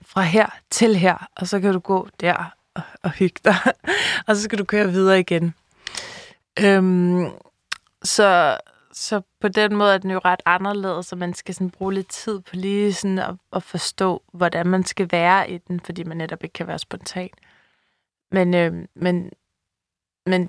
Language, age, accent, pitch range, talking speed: Danish, 20-39, native, 175-195 Hz, 175 wpm